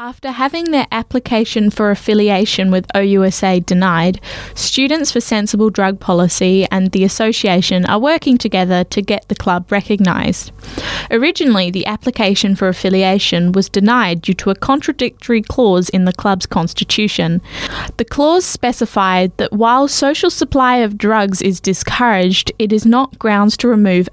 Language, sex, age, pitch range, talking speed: English, female, 10-29, 185-235 Hz, 145 wpm